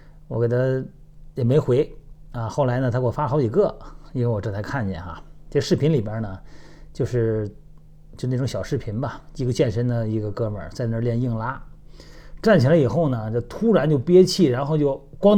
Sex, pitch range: male, 120-160 Hz